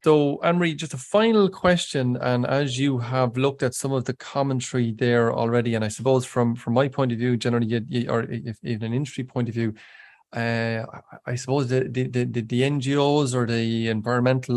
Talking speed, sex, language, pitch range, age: 200 wpm, male, English, 120-135 Hz, 20-39